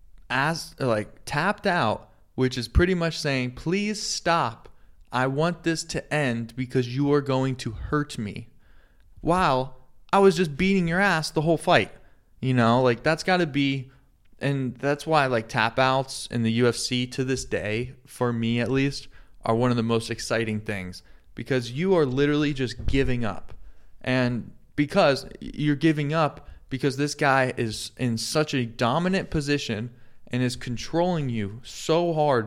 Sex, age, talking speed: male, 20-39, 165 wpm